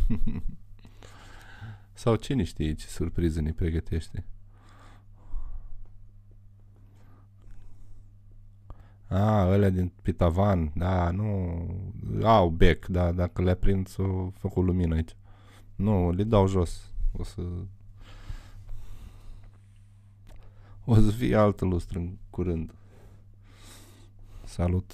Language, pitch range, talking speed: Romanian, 90-100 Hz, 95 wpm